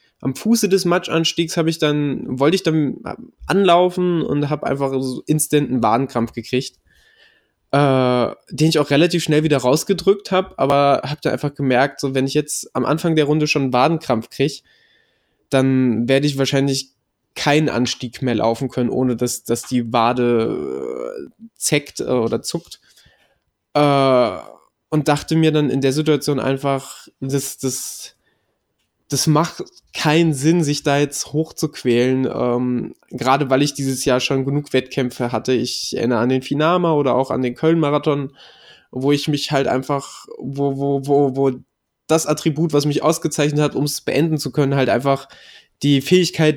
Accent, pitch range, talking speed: German, 130-155 Hz, 160 wpm